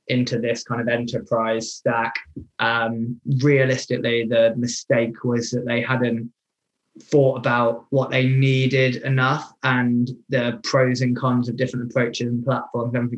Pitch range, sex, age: 115-125 Hz, male, 20-39